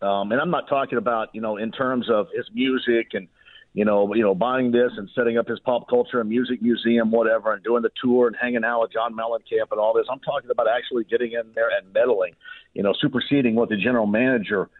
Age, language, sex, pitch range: 50-69, English, male, 125-180 Hz